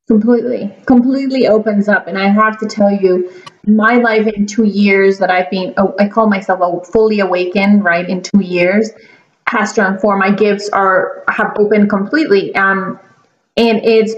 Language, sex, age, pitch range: English, female, 30-49, 205-265 Hz